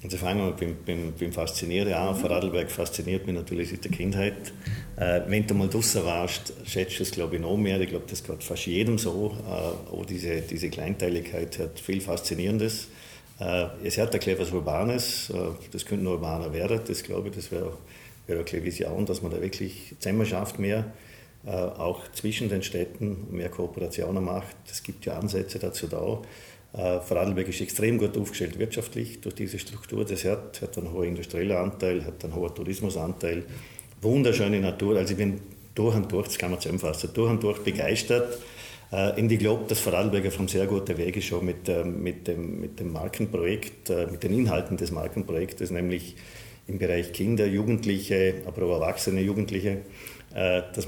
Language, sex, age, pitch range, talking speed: German, male, 50-69, 90-110 Hz, 180 wpm